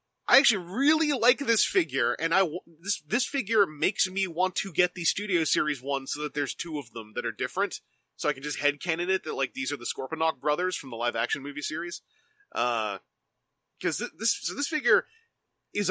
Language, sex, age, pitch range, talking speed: English, male, 20-39, 150-210 Hz, 215 wpm